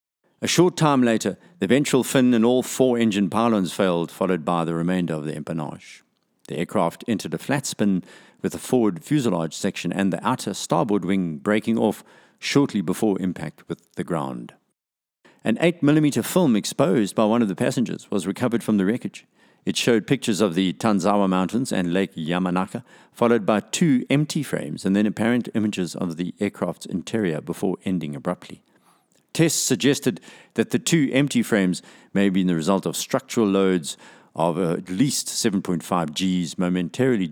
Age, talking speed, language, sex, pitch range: 50-69, 170 wpm, English, male, 85-125 Hz